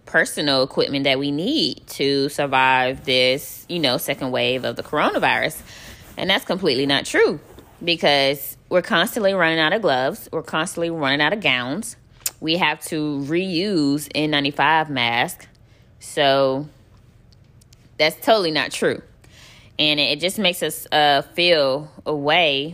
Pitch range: 125-155 Hz